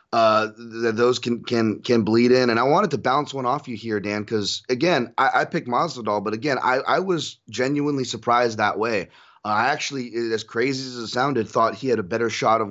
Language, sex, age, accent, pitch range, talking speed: English, male, 30-49, American, 110-140 Hz, 220 wpm